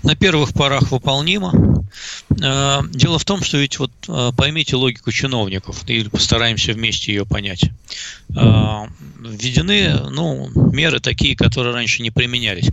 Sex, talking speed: male, 125 wpm